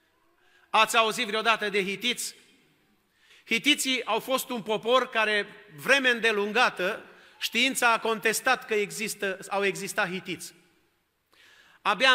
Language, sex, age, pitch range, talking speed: Romanian, male, 40-59, 210-255 Hz, 110 wpm